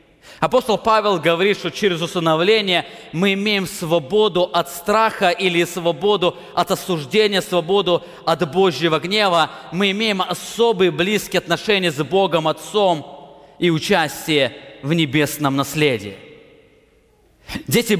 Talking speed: 110 wpm